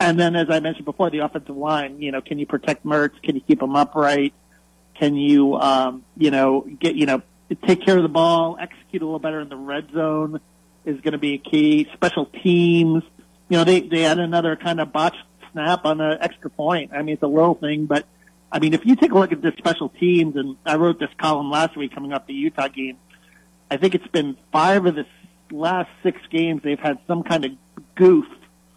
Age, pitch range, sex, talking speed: 40-59, 140-165 Hz, male, 225 wpm